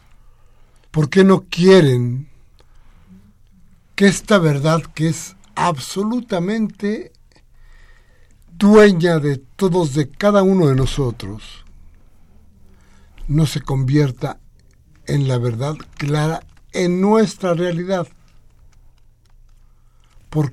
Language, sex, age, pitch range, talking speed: Spanish, male, 60-79, 110-155 Hz, 85 wpm